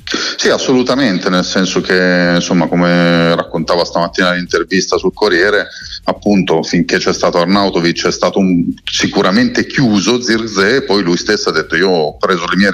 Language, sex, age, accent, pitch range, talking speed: Italian, male, 40-59, native, 85-105 Hz, 155 wpm